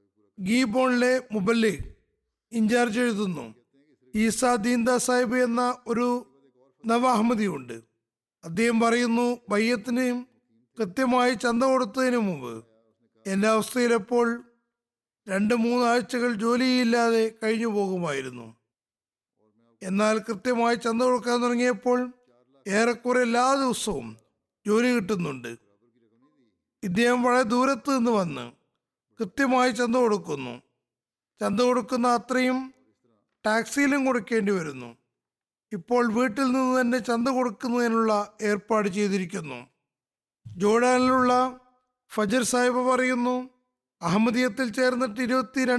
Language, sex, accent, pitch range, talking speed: Malayalam, male, native, 190-250 Hz, 75 wpm